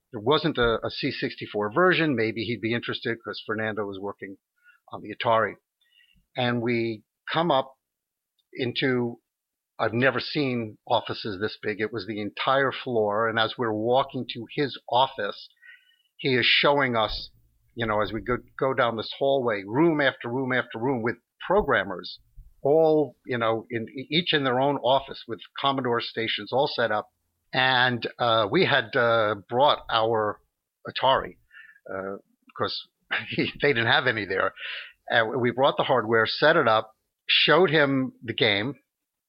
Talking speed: 155 wpm